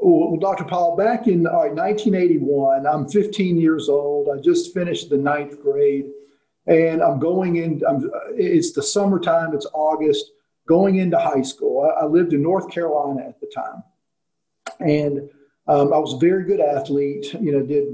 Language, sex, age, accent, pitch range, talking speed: English, male, 50-69, American, 145-210 Hz, 175 wpm